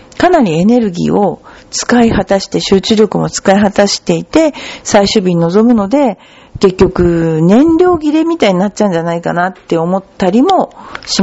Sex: female